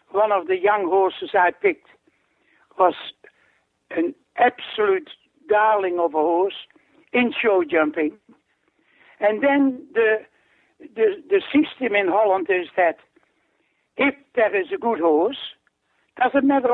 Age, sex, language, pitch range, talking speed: 60-79, male, English, 200-330 Hz, 125 wpm